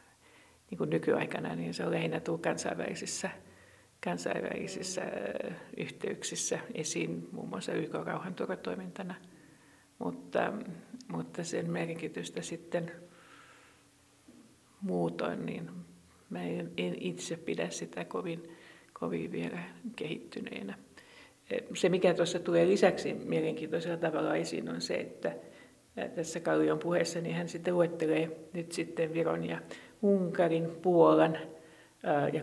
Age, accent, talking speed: 50-69, native, 100 wpm